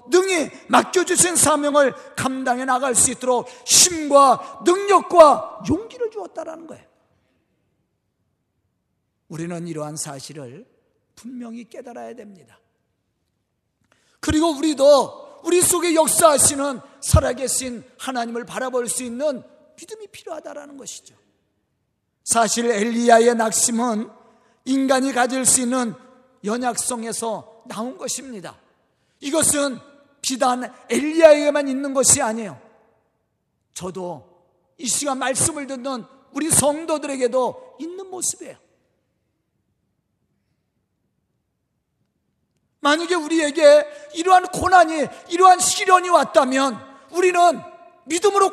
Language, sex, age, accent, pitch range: Korean, male, 40-59, native, 240-320 Hz